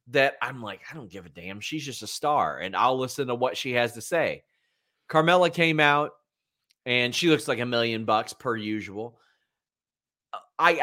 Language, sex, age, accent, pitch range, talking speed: English, male, 30-49, American, 105-155 Hz, 190 wpm